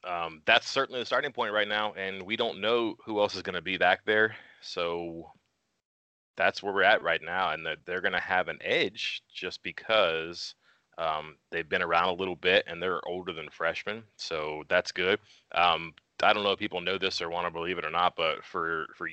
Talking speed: 220 wpm